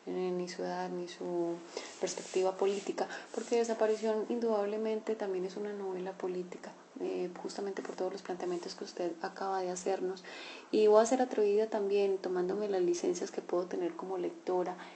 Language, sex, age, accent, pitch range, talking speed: Spanish, female, 20-39, Colombian, 180-210 Hz, 160 wpm